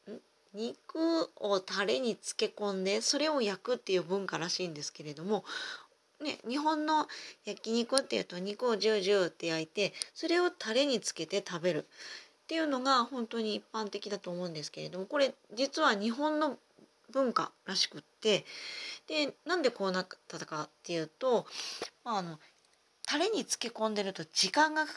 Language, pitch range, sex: Japanese, 175-250 Hz, female